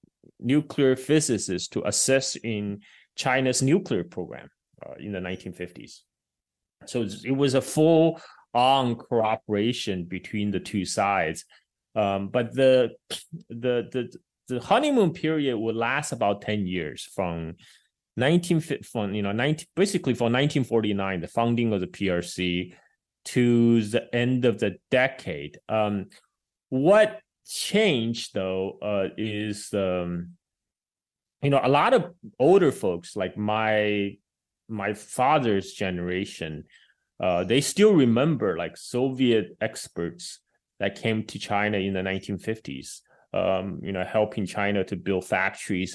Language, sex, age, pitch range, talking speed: English, male, 20-39, 100-130 Hz, 125 wpm